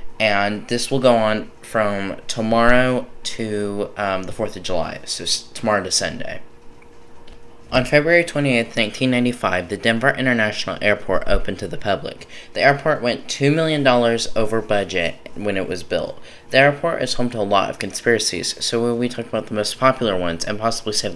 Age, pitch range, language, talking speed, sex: 10-29, 105-125 Hz, English, 175 wpm, male